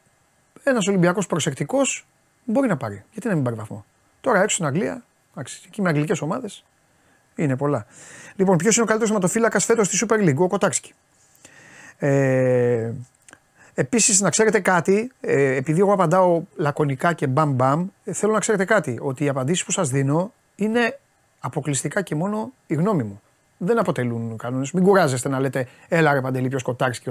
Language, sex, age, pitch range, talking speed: Greek, male, 30-49, 140-205 Hz, 165 wpm